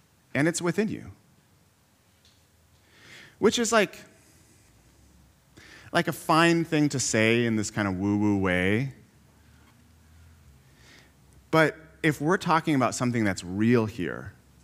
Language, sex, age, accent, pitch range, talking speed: English, male, 30-49, American, 105-140 Hz, 115 wpm